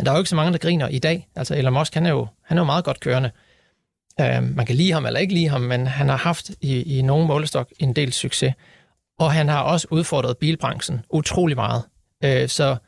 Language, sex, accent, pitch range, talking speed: Danish, male, native, 130-170 Hz, 225 wpm